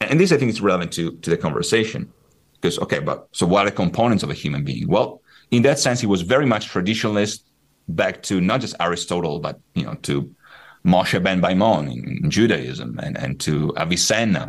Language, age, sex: English, 40-59, male